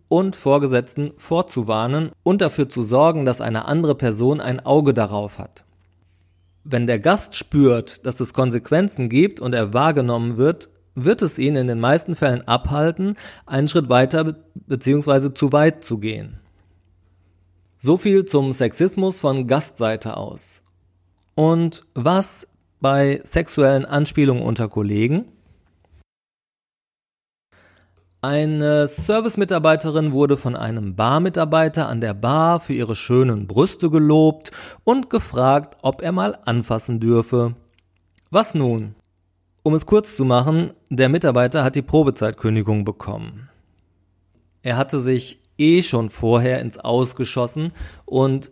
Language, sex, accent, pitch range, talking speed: German, male, German, 110-155 Hz, 125 wpm